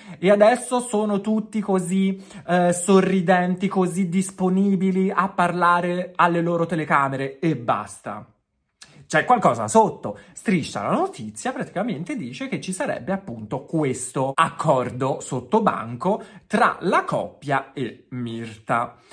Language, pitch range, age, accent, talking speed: Italian, 135-205 Hz, 30-49, native, 115 wpm